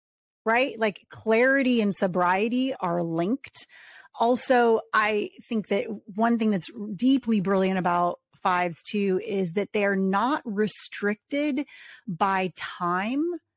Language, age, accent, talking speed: English, 30-49, American, 115 wpm